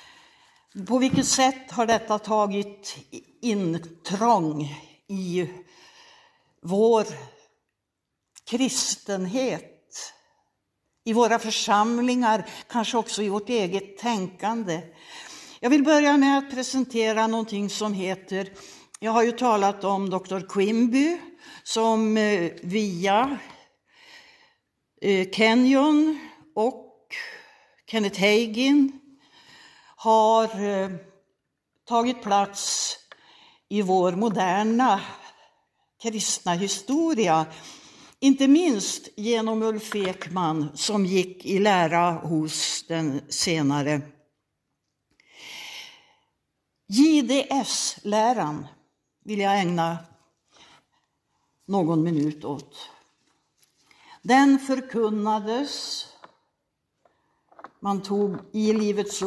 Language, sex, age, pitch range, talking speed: Swedish, female, 60-79, 190-260 Hz, 75 wpm